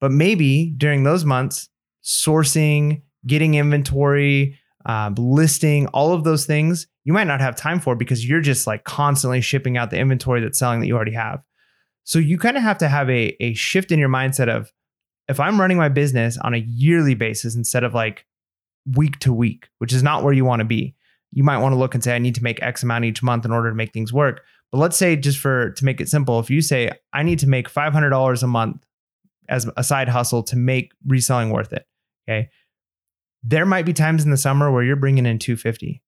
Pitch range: 120-150 Hz